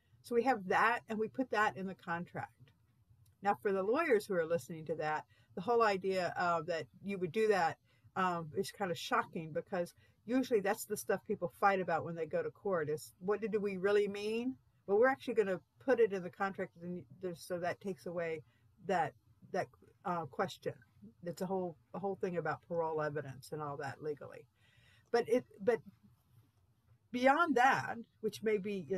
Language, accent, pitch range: English, American, 155-220 Hz